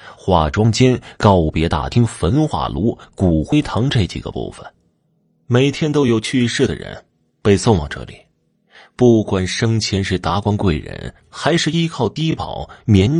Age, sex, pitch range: 30-49, male, 85-120 Hz